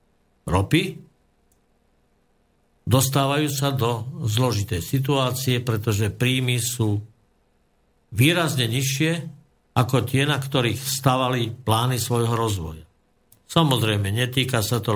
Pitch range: 115-135 Hz